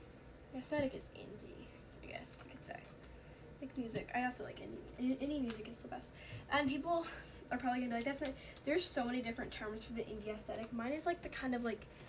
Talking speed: 210 wpm